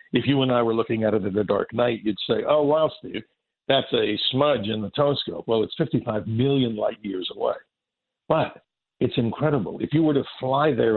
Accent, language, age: American, English, 50-69